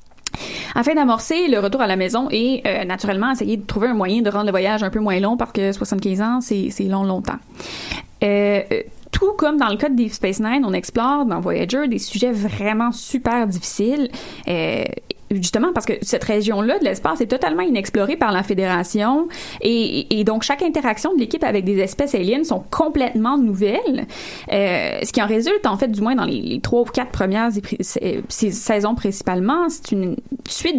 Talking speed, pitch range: 195 wpm, 205-280 Hz